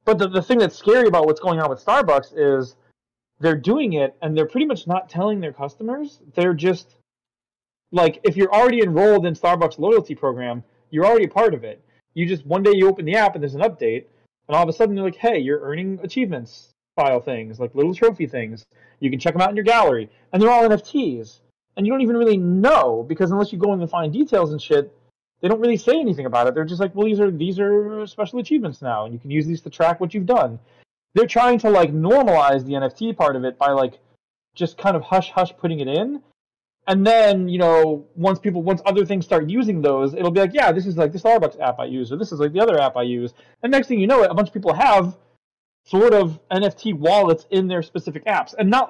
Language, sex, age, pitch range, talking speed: English, male, 30-49, 145-210 Hz, 245 wpm